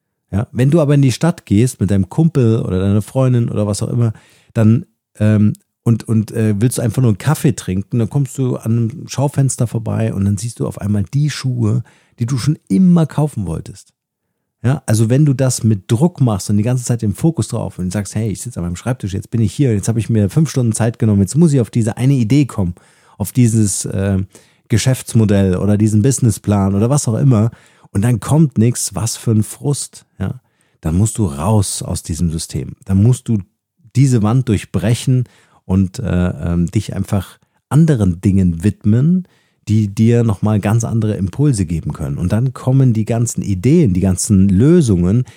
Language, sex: German, male